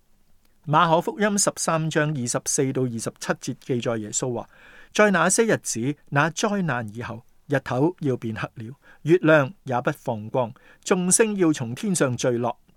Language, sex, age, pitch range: Chinese, male, 50-69, 120-170 Hz